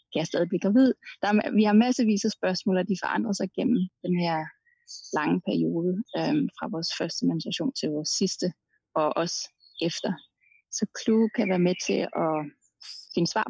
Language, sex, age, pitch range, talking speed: Danish, female, 30-49, 175-220 Hz, 170 wpm